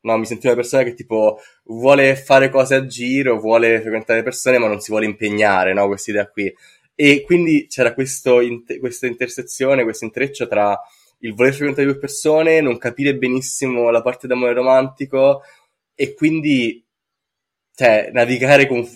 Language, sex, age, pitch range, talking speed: Italian, male, 20-39, 105-135 Hz, 155 wpm